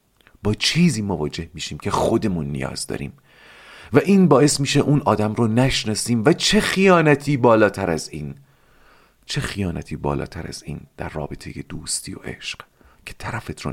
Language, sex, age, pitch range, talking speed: Persian, male, 40-59, 80-125 Hz, 155 wpm